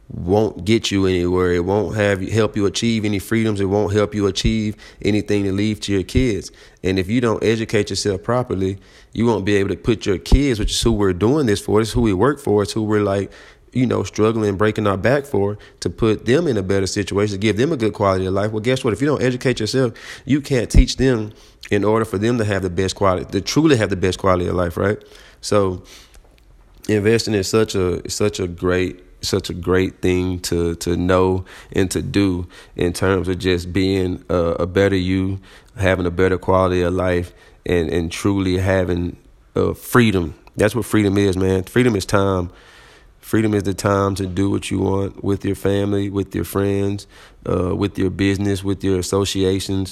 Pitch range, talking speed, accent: 95-105 Hz, 220 wpm, American